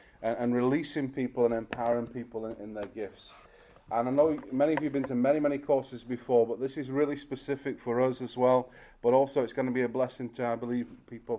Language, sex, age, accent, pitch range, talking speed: English, male, 30-49, British, 115-135 Hz, 230 wpm